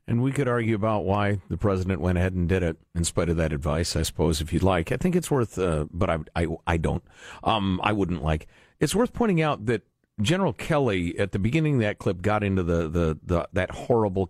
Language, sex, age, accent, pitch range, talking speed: English, male, 50-69, American, 85-110 Hz, 240 wpm